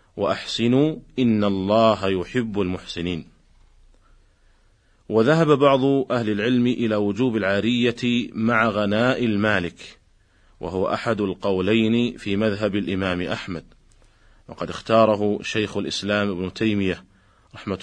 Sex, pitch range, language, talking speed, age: male, 100-120 Hz, Arabic, 100 wpm, 40-59